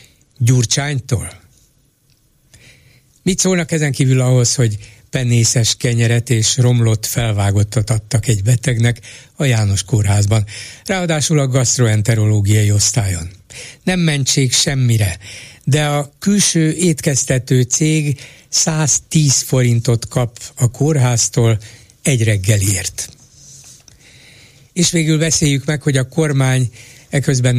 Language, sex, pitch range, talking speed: Hungarian, male, 115-145 Hz, 100 wpm